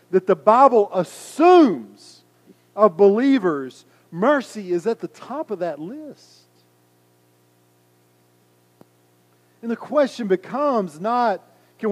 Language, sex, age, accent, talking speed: English, male, 40-59, American, 100 wpm